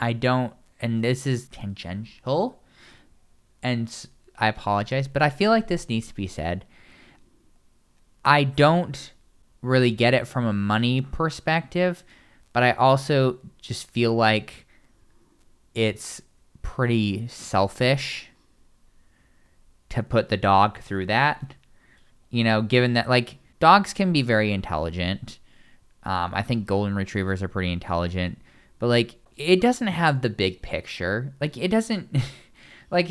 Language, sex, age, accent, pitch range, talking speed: English, male, 10-29, American, 100-140 Hz, 130 wpm